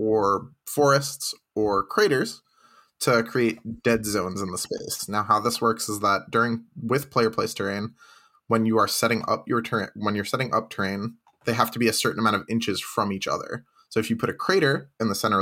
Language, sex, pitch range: English, male, 105-130 Hz